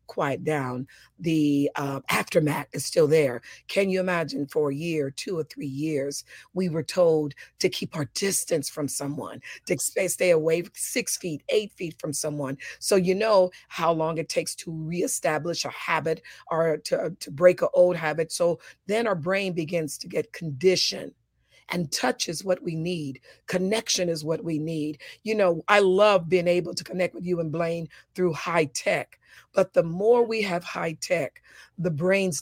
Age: 40-59